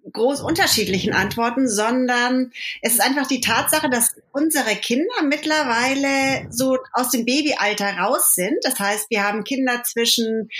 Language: German